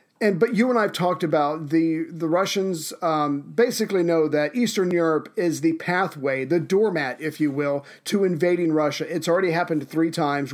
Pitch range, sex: 150-195 Hz, male